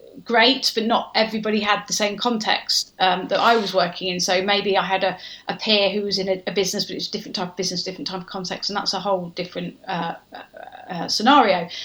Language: English